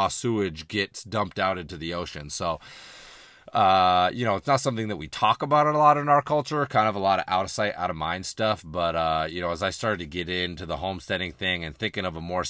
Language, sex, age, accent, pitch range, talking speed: English, male, 30-49, American, 85-115 Hz, 255 wpm